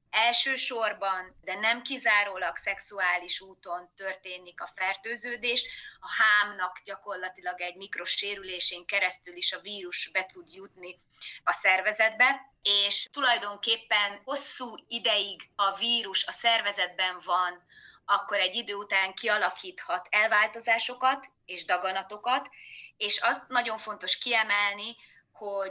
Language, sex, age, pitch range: Hungarian, female, 20-39, 190-245 Hz